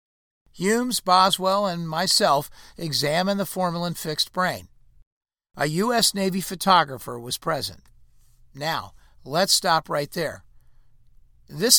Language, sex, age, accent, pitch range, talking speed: English, male, 50-69, American, 135-185 Hz, 105 wpm